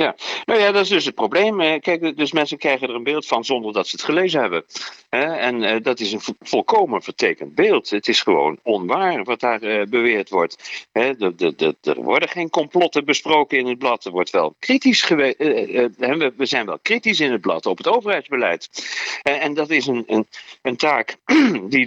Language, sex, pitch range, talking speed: Dutch, male, 115-180 Hz, 180 wpm